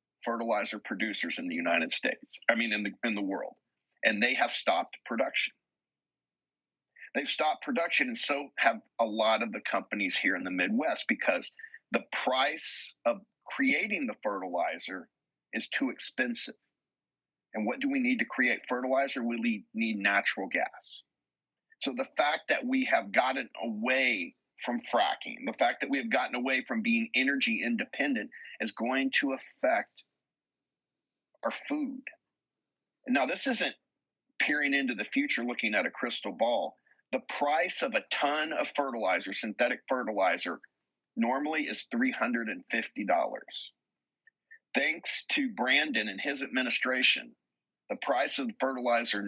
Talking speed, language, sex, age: 140 wpm, English, male, 50-69